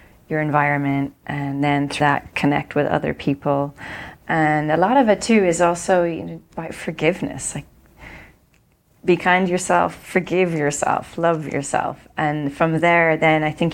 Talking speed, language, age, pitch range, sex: 160 wpm, English, 30-49, 140-160 Hz, female